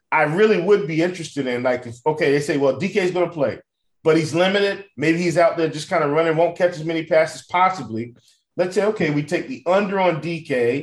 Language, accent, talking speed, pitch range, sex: English, American, 235 wpm, 115-165 Hz, male